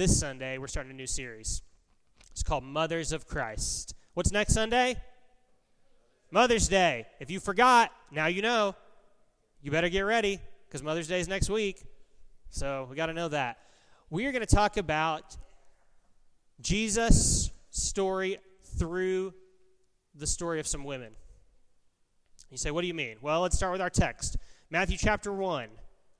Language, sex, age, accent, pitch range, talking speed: English, male, 30-49, American, 150-195 Hz, 155 wpm